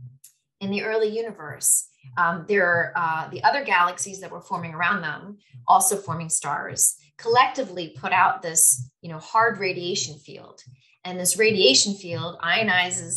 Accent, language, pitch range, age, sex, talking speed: American, English, 155-205 Hz, 30-49, female, 150 wpm